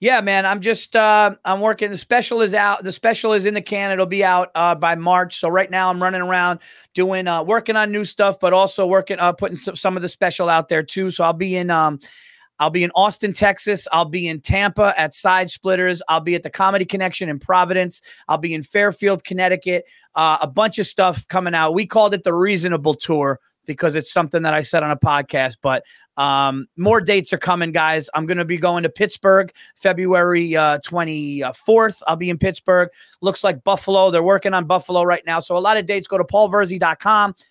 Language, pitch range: English, 165-200 Hz